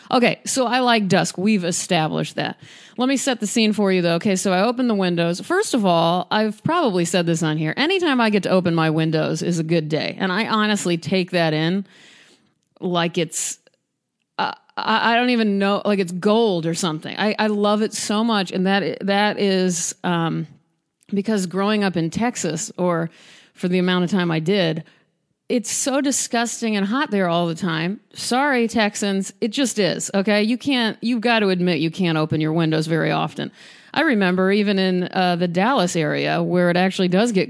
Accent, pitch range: American, 175-220 Hz